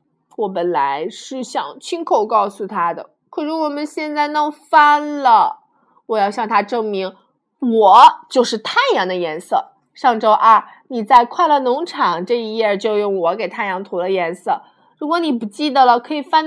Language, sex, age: Chinese, female, 20-39